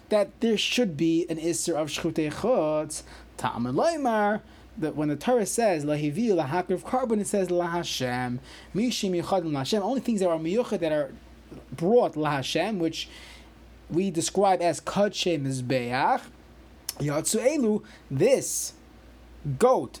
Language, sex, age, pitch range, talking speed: English, male, 30-49, 165-225 Hz, 135 wpm